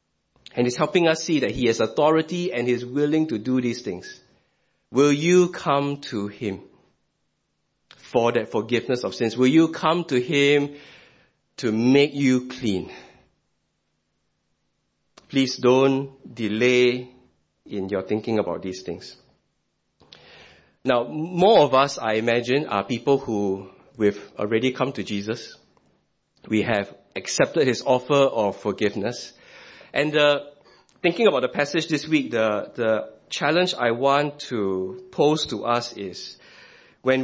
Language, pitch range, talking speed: English, 100-145 Hz, 135 wpm